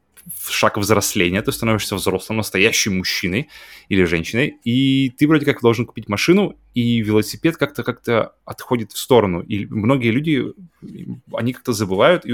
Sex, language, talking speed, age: male, Russian, 145 wpm, 20-39